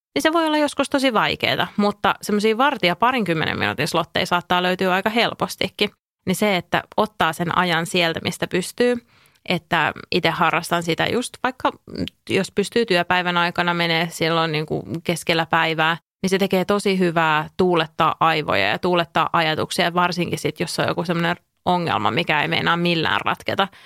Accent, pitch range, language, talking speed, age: Finnish, 165-210 Hz, English, 160 wpm, 30-49